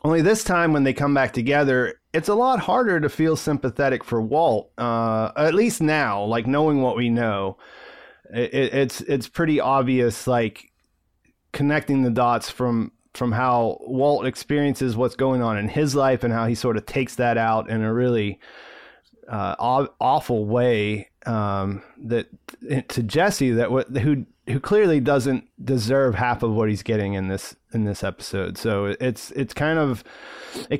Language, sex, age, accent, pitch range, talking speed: English, male, 30-49, American, 115-150 Hz, 170 wpm